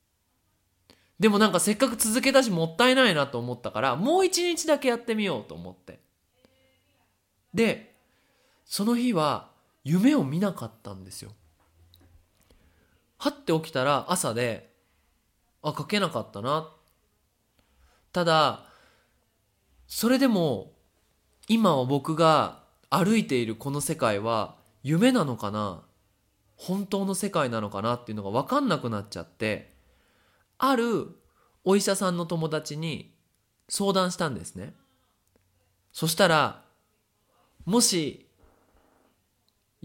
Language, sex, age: Japanese, male, 20-39